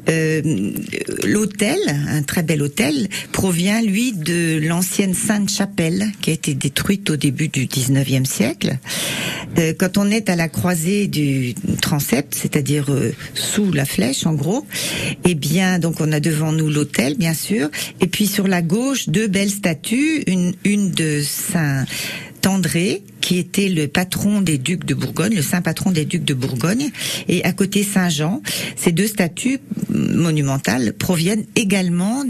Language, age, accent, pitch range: French, 50-69, French, 155-195 Hz